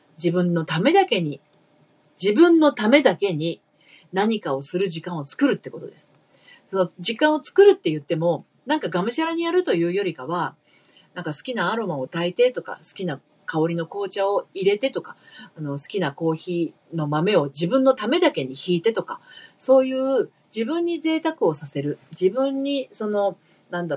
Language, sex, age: Japanese, female, 40-59